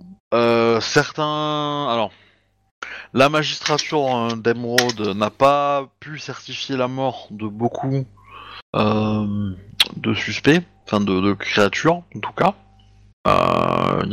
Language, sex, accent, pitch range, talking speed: French, male, French, 100-120 Hz, 110 wpm